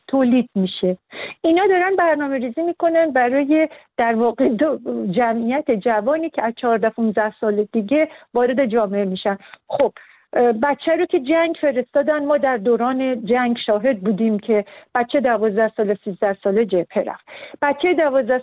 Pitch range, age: 210-275 Hz, 50-69